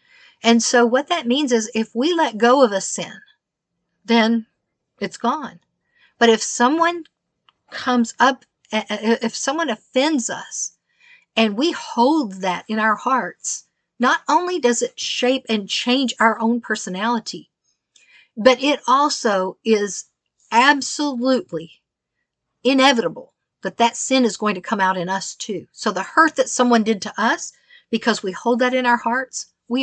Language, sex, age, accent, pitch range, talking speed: English, female, 50-69, American, 200-255 Hz, 150 wpm